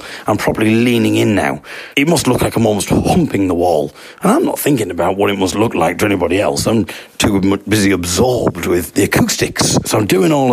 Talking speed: 215 wpm